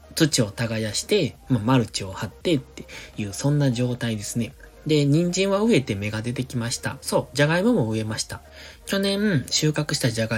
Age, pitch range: 20-39, 110-155 Hz